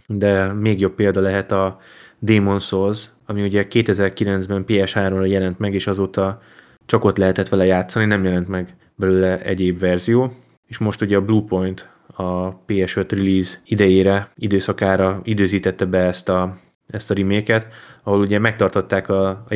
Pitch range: 95-110 Hz